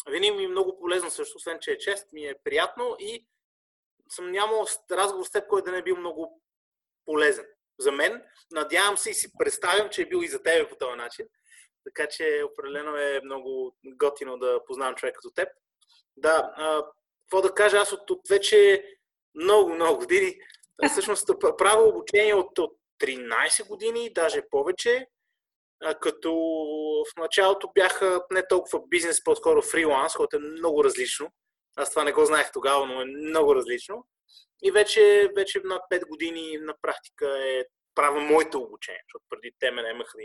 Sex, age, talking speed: male, 20-39, 175 wpm